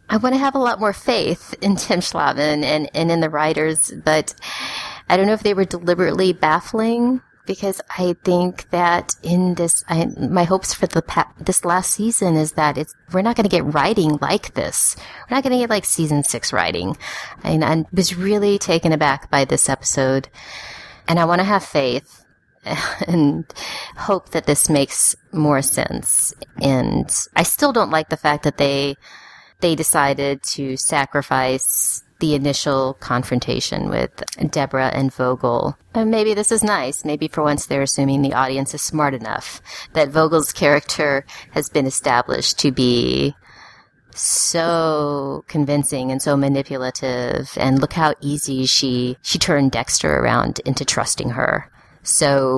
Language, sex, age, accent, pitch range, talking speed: English, female, 30-49, American, 140-180 Hz, 165 wpm